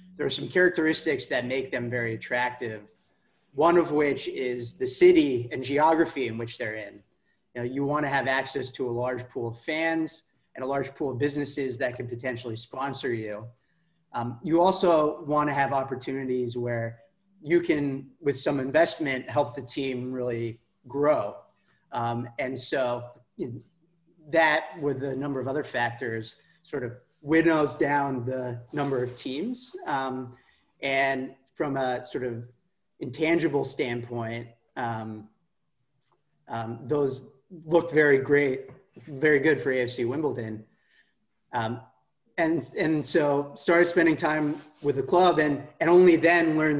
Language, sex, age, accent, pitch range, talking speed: English, male, 30-49, American, 120-155 Hz, 145 wpm